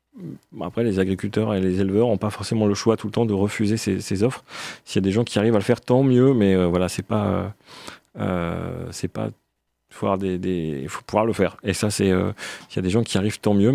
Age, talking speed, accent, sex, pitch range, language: 30-49, 255 wpm, French, male, 100-125 Hz, French